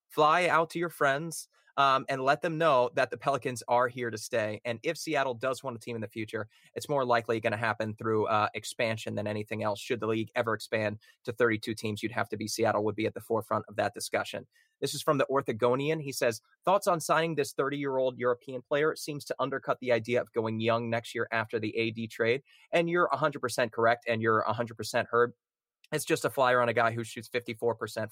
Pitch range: 115-140 Hz